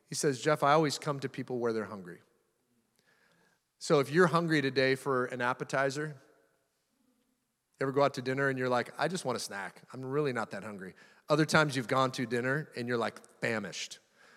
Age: 30-49